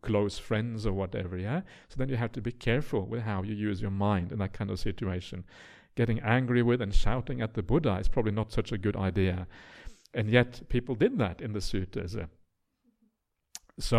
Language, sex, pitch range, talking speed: English, male, 105-135 Hz, 200 wpm